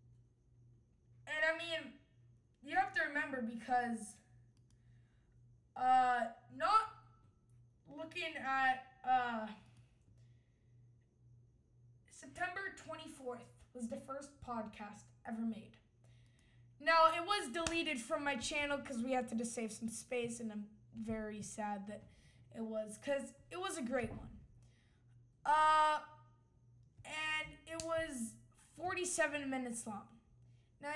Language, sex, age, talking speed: English, female, 20-39, 110 wpm